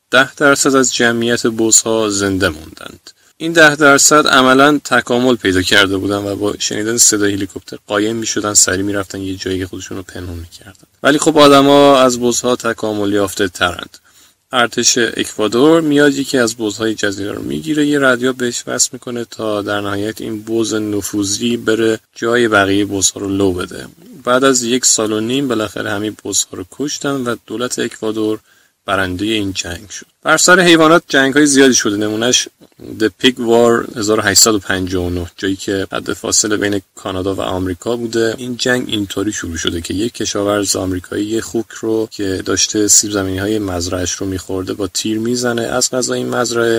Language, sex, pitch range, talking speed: Persian, male, 100-120 Hz, 170 wpm